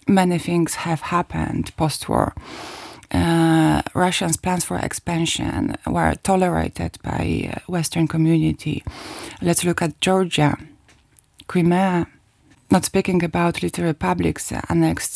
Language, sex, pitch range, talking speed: English, female, 150-190 Hz, 105 wpm